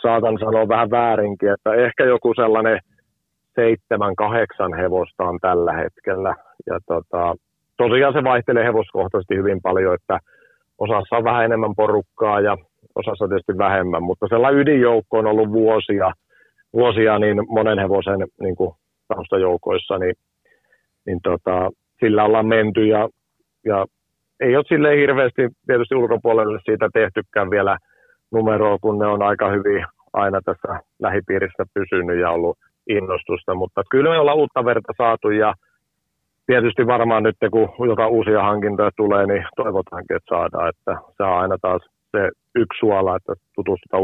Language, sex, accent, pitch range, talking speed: Finnish, male, native, 95-110 Hz, 140 wpm